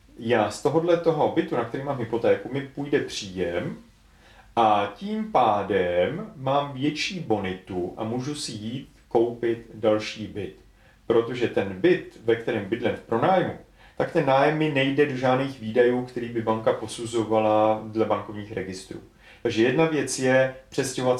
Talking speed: 150 wpm